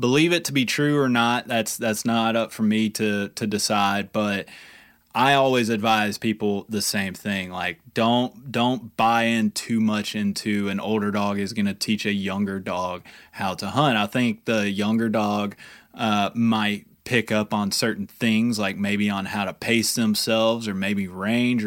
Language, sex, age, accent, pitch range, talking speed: English, male, 20-39, American, 105-125 Hz, 185 wpm